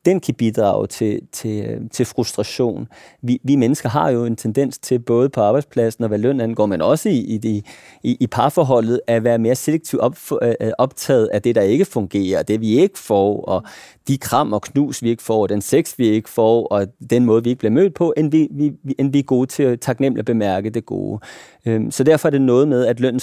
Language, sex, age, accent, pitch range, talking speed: Danish, male, 30-49, native, 115-140 Hz, 220 wpm